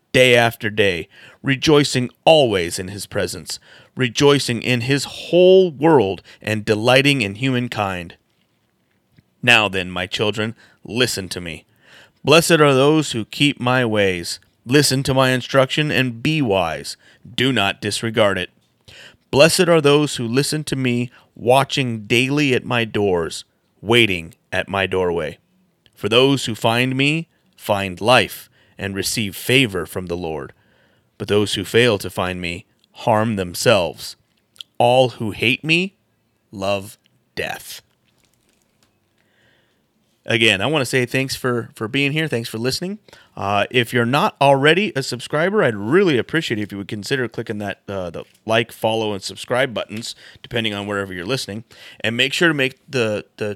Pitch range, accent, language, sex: 105-135 Hz, American, English, male